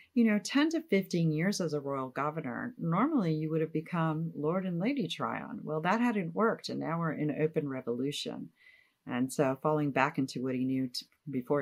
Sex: female